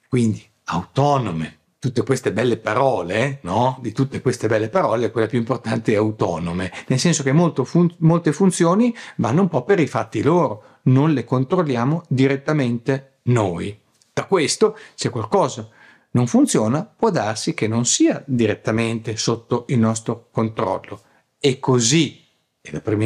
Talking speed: 145 wpm